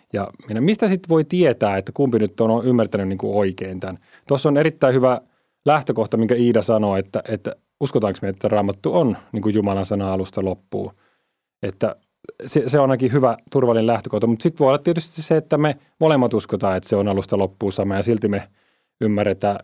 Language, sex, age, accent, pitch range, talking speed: Finnish, male, 30-49, native, 105-140 Hz, 185 wpm